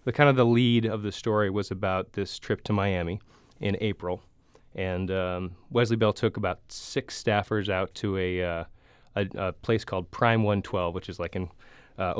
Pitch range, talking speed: 95-120 Hz, 190 wpm